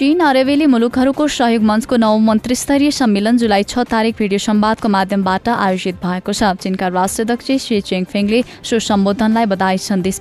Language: English